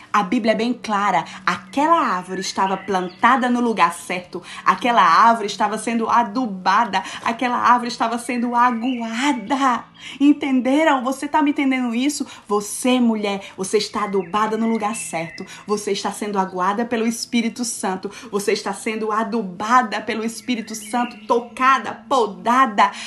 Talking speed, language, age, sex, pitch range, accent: 135 wpm, Portuguese, 20-39, female, 200-255 Hz, Brazilian